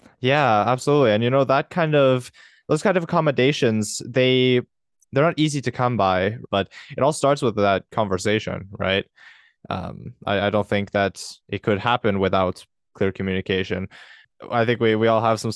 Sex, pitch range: male, 100-120 Hz